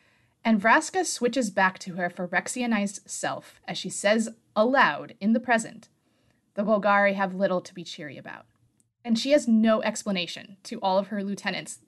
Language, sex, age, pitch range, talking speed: English, female, 20-39, 175-215 Hz, 165 wpm